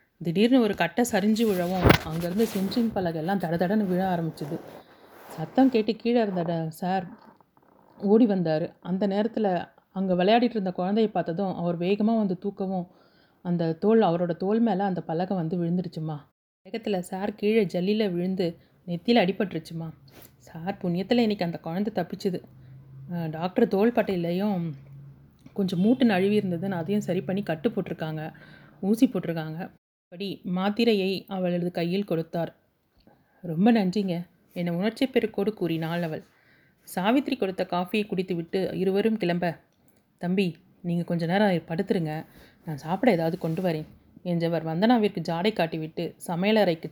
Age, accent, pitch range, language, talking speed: 30-49, native, 170-205 Hz, Tamil, 125 wpm